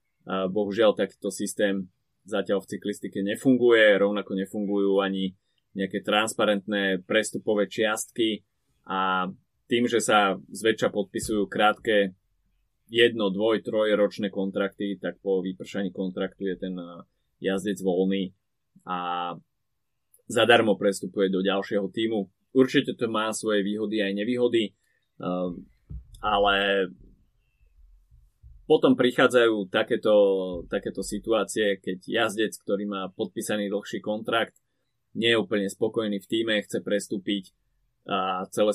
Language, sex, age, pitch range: Slovak, male, 20-39, 95-110 Hz